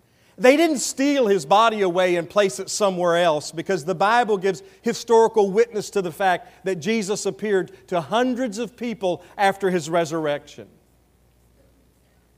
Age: 40-59